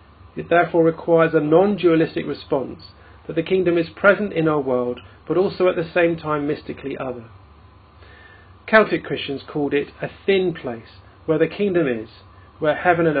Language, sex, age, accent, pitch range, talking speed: English, male, 40-59, British, 125-165 Hz, 165 wpm